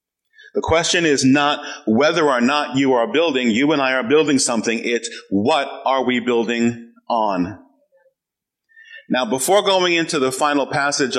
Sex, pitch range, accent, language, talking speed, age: male, 120-185 Hz, American, English, 155 wpm, 40-59